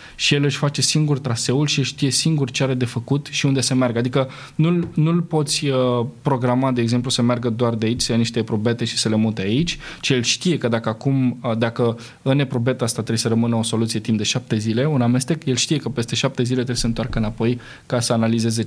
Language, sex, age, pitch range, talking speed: Romanian, male, 20-39, 120-145 Hz, 230 wpm